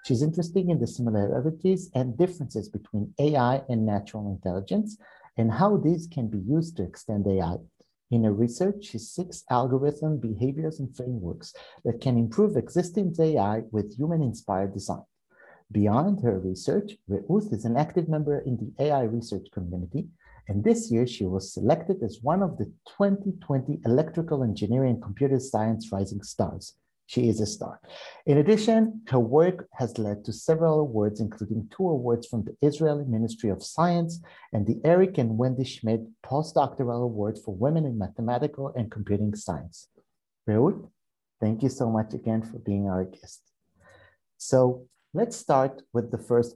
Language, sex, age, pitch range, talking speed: English, male, 50-69, 110-165 Hz, 155 wpm